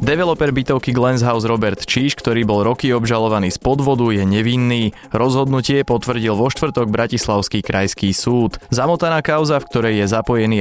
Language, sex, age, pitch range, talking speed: Slovak, male, 20-39, 100-130 Hz, 145 wpm